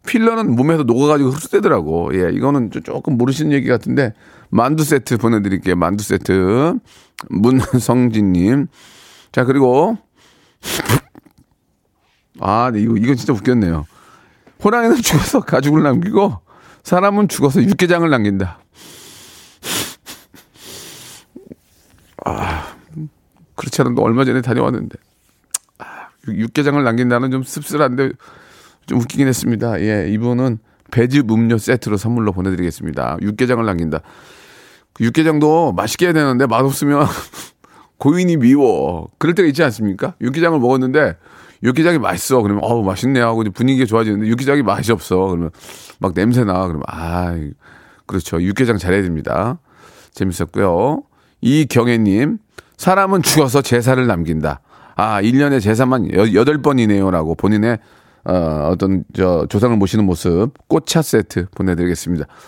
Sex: male